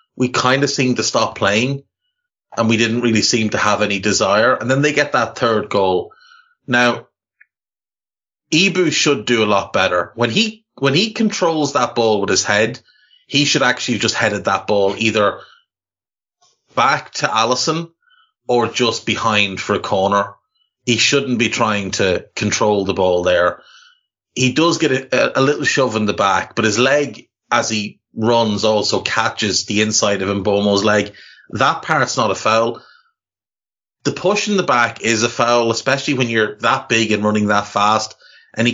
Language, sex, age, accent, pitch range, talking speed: English, male, 30-49, Irish, 105-145 Hz, 175 wpm